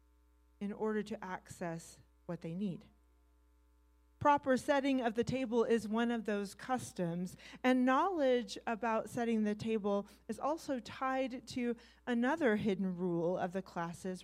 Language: English